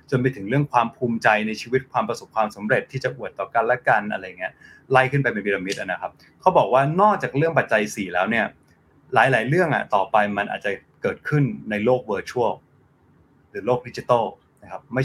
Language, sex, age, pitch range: Thai, male, 20-39, 125-155 Hz